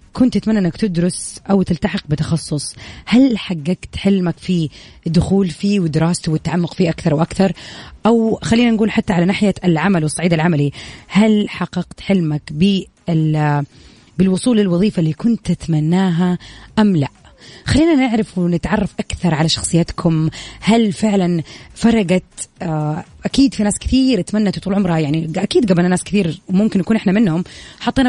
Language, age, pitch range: English, 20-39, 170-215 Hz